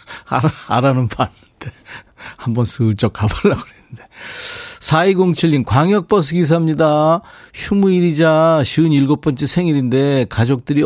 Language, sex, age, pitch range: Korean, male, 40-59, 115-155 Hz